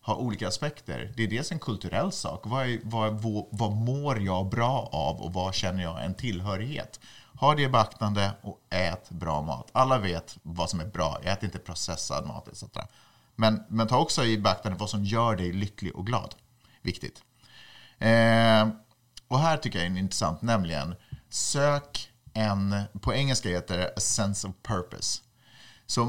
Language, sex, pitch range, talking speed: Swedish, male, 95-120 Hz, 170 wpm